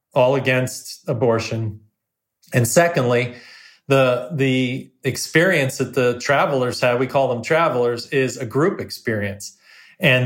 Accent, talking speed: American, 125 wpm